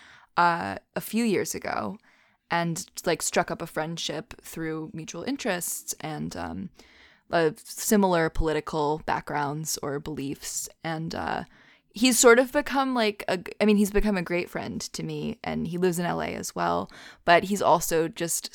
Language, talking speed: English, 155 wpm